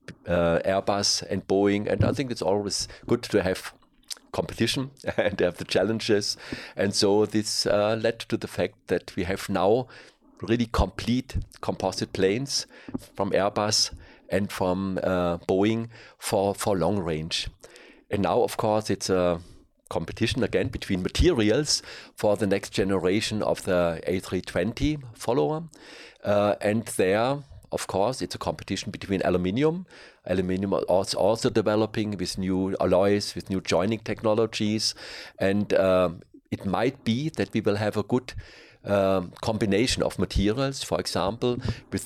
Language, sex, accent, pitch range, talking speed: English, male, German, 95-115 Hz, 140 wpm